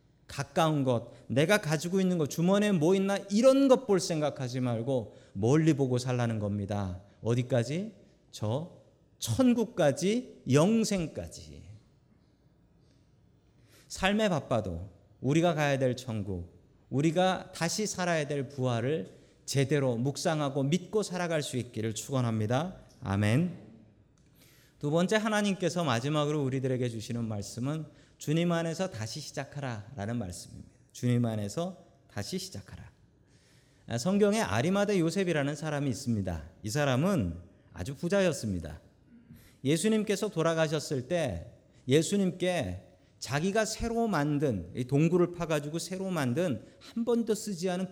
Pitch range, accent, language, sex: 120-180 Hz, native, Korean, male